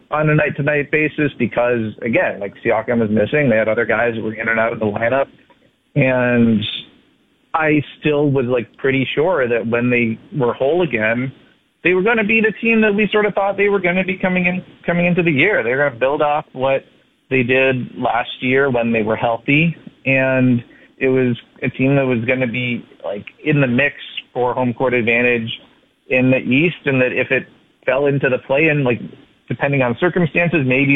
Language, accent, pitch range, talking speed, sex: English, American, 120-150 Hz, 210 wpm, male